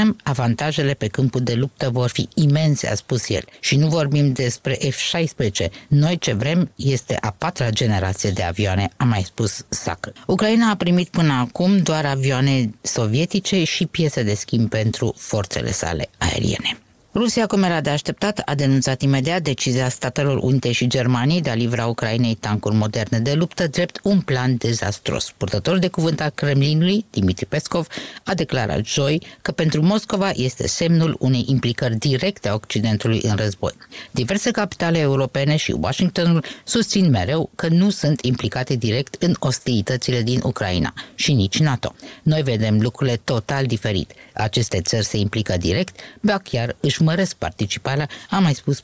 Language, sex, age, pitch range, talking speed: Romanian, female, 20-39, 115-160 Hz, 160 wpm